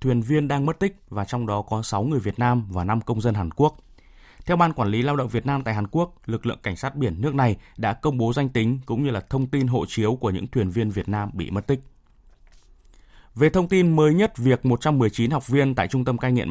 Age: 20-39